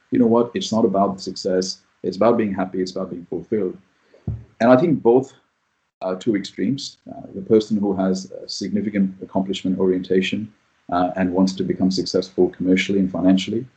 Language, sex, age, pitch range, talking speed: English, male, 40-59, 95-100 Hz, 170 wpm